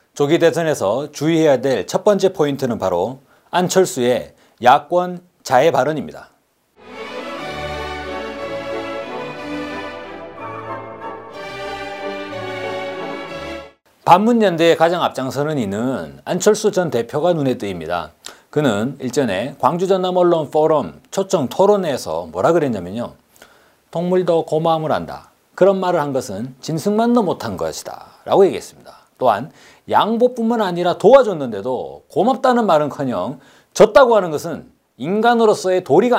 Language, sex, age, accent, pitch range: Korean, male, 40-59, native, 120-190 Hz